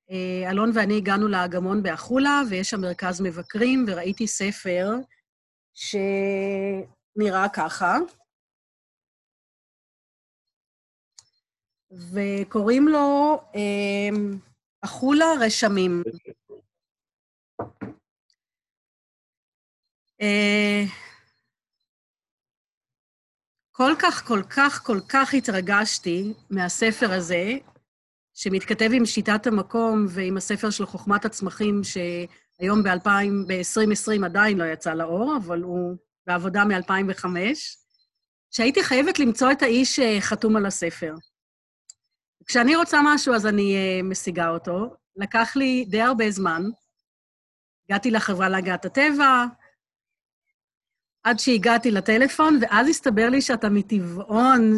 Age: 40-59